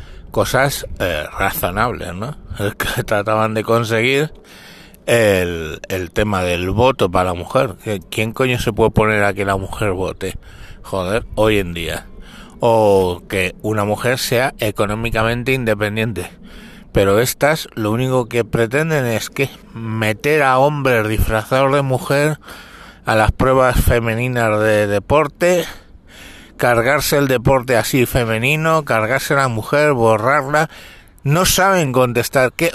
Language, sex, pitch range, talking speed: Spanish, male, 105-145 Hz, 130 wpm